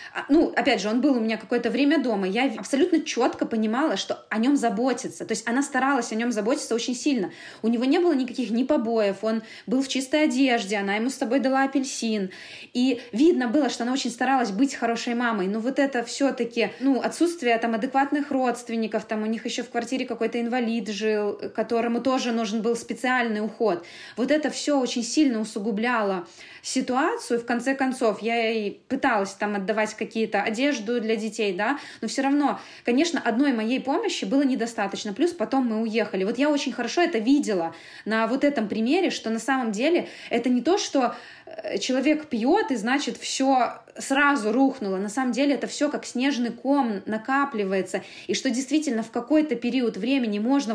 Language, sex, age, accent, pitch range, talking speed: Russian, female, 20-39, native, 220-275 Hz, 180 wpm